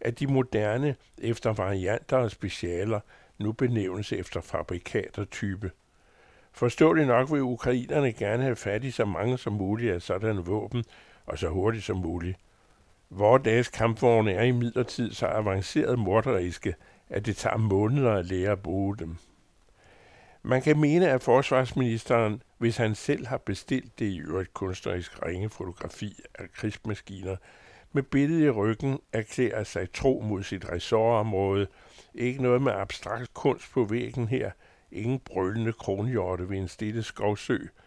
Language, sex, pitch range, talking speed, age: Danish, male, 95-125 Hz, 145 wpm, 60-79